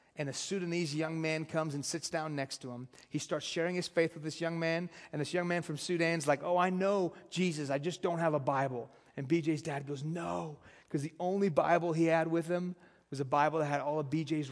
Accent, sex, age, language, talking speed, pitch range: American, male, 30-49, English, 245 wpm, 140-165 Hz